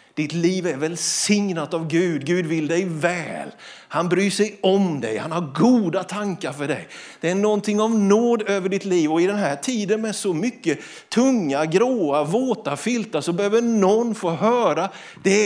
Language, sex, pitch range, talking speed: Swedish, male, 160-215 Hz, 185 wpm